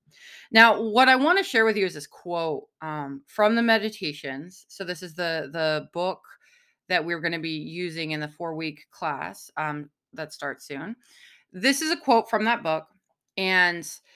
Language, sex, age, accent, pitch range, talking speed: English, female, 20-39, American, 175-220 Hz, 185 wpm